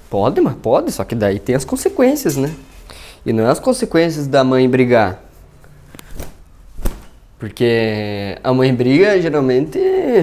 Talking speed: 140 wpm